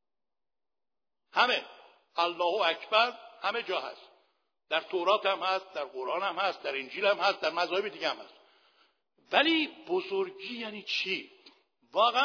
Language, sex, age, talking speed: Persian, male, 60-79, 135 wpm